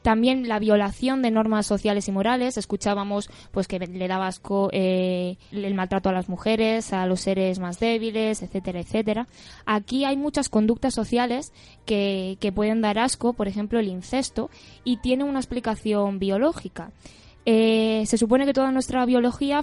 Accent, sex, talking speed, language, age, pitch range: Spanish, female, 160 wpm, Spanish, 20-39, 195-240 Hz